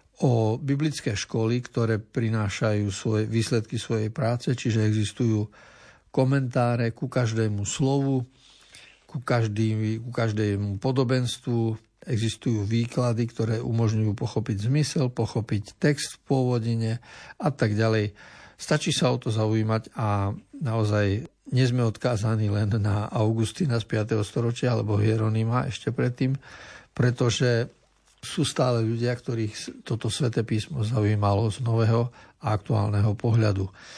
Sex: male